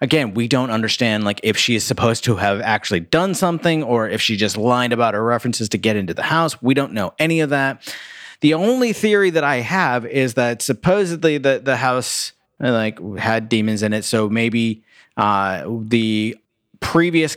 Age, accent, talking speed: 30-49, American, 190 wpm